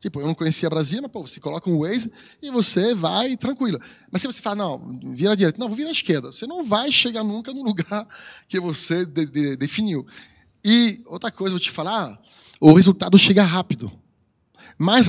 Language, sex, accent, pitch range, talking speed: Portuguese, male, Brazilian, 155-215 Hz, 205 wpm